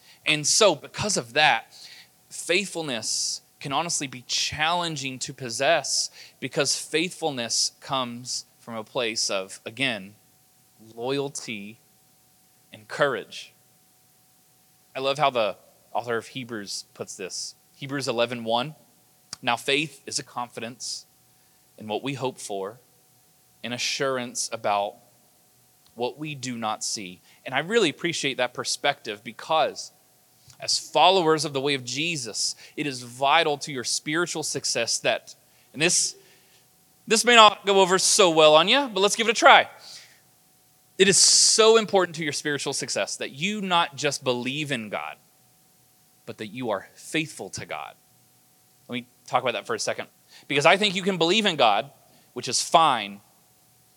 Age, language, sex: 20-39, English, male